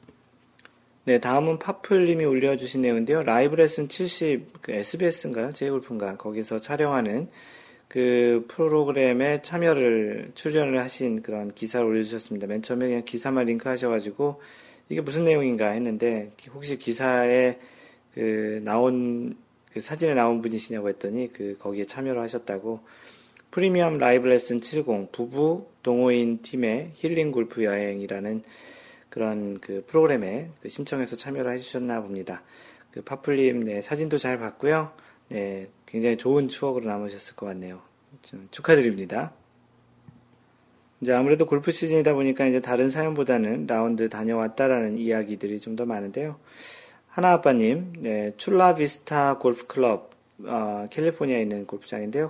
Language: Korean